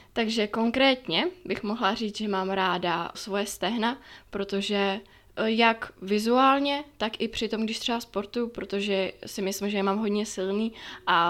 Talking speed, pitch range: 150 wpm, 195-225 Hz